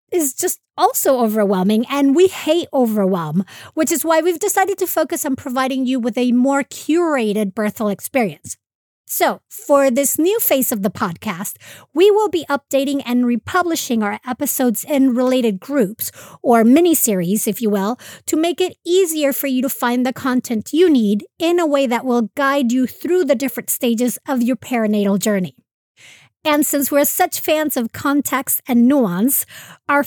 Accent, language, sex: American, English, female